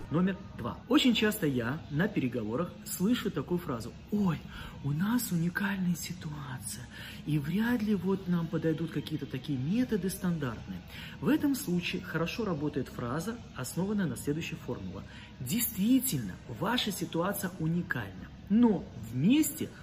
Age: 30-49